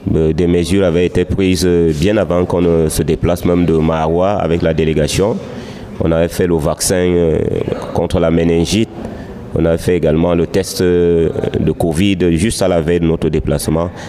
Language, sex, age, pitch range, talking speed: French, male, 30-49, 80-95 Hz, 165 wpm